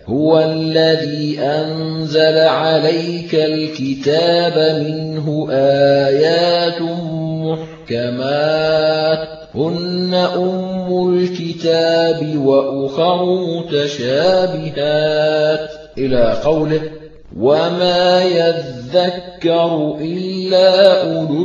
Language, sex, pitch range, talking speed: Arabic, male, 145-170 Hz, 55 wpm